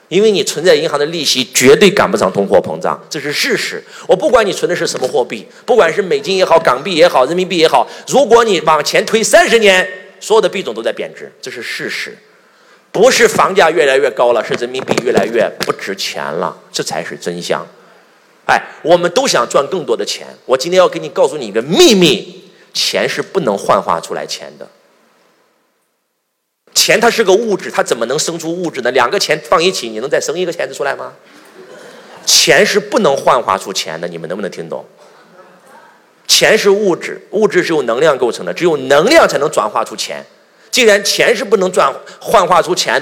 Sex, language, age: male, Chinese, 30-49